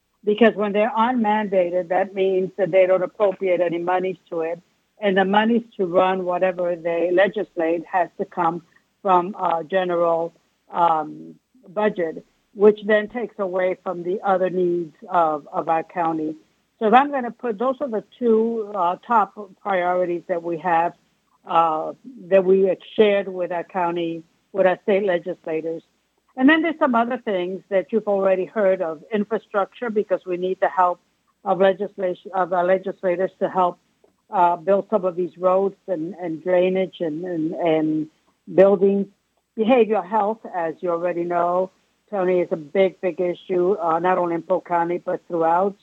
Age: 60-79